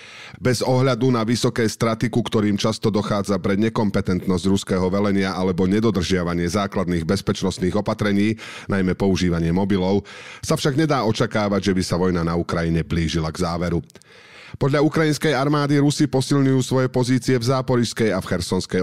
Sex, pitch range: male, 95-125 Hz